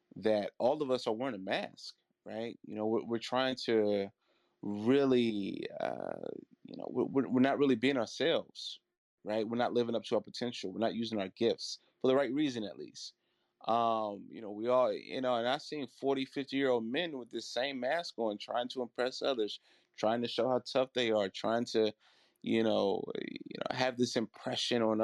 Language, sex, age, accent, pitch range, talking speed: English, male, 30-49, American, 110-135 Hz, 205 wpm